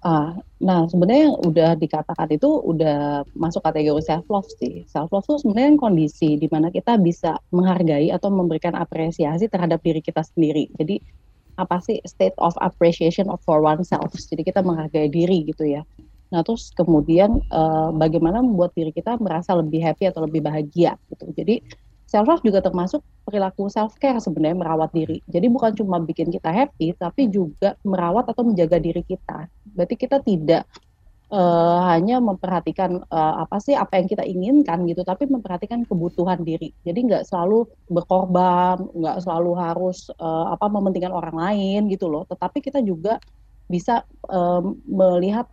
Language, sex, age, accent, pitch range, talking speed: Indonesian, female, 30-49, native, 160-200 Hz, 160 wpm